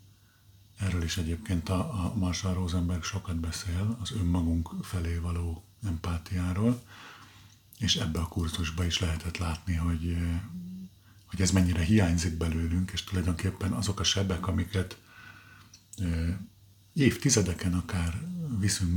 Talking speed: 110 wpm